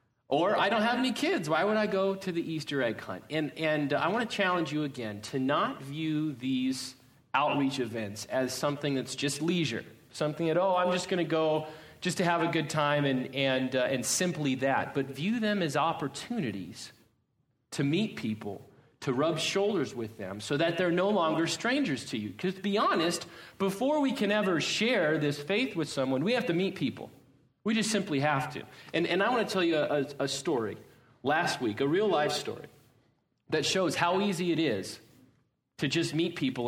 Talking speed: 205 wpm